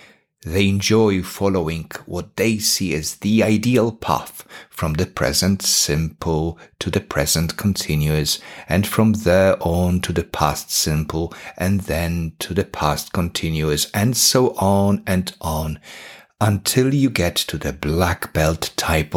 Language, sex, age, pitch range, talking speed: English, male, 50-69, 80-115 Hz, 140 wpm